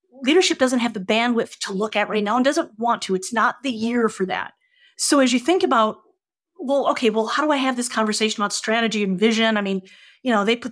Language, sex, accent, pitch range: English, female, American, 205-265 Hz